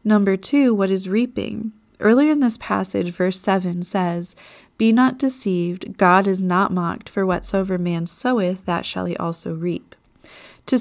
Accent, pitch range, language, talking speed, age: American, 180-210 Hz, English, 160 wpm, 30-49